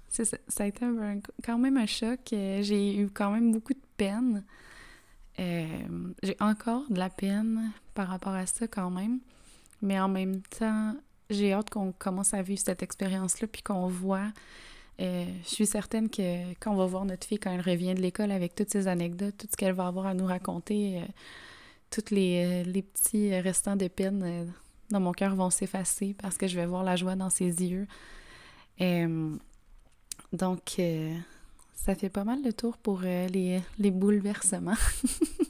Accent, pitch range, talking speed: Canadian, 185-215 Hz, 185 wpm